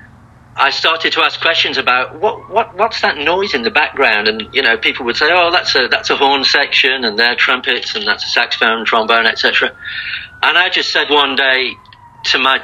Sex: male